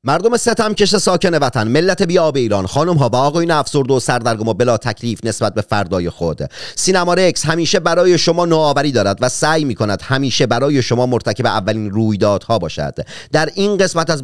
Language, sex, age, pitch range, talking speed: Persian, male, 30-49, 115-175 Hz, 185 wpm